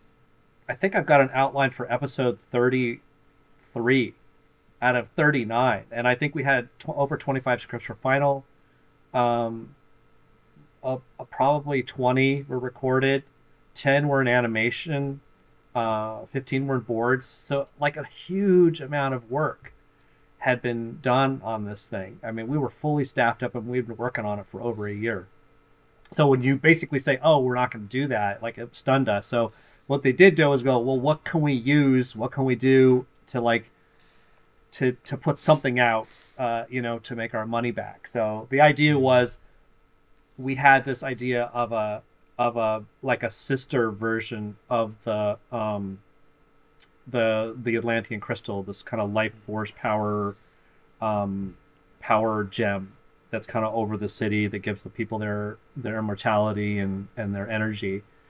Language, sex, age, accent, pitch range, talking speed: English, male, 30-49, American, 110-140 Hz, 170 wpm